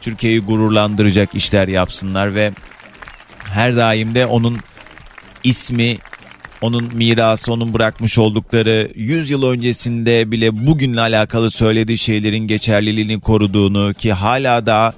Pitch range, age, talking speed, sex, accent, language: 95-115 Hz, 40-59, 110 wpm, male, native, Turkish